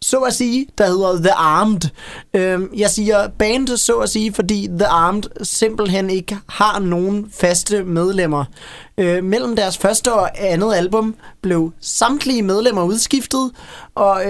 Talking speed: 140 wpm